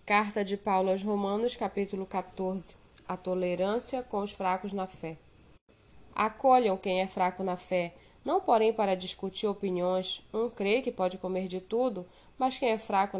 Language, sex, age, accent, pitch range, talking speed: Portuguese, female, 10-29, Brazilian, 190-240 Hz, 165 wpm